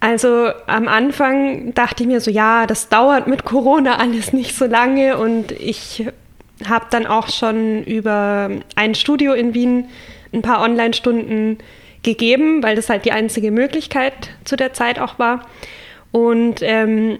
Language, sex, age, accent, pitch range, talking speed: German, female, 20-39, German, 215-245 Hz, 155 wpm